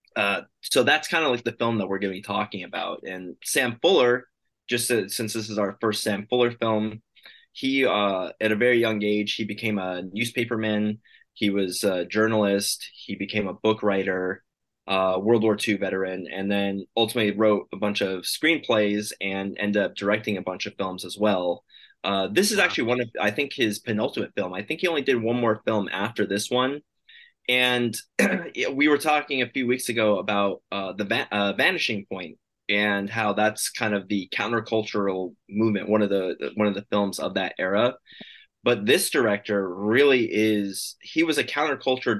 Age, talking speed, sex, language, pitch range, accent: 20-39, 190 wpm, male, English, 100-115 Hz, American